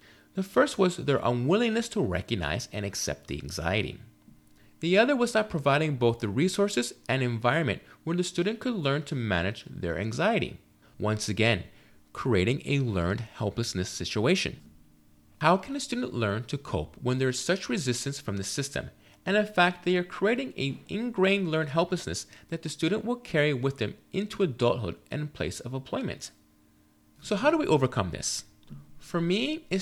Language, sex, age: English, male, 30-49